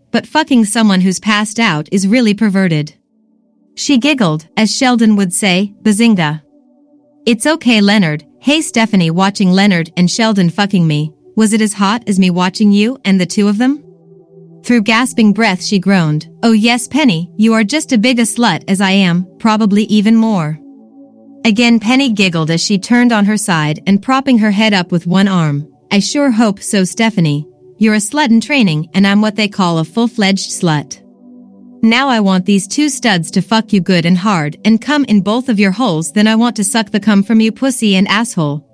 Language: English